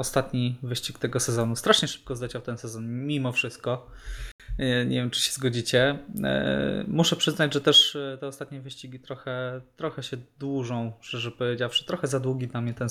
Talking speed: 165 wpm